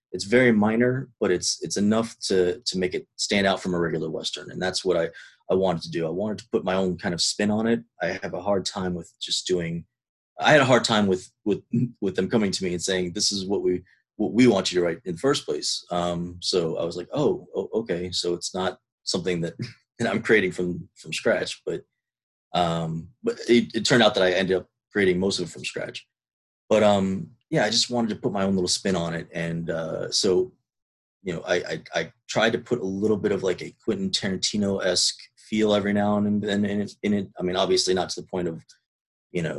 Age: 30-49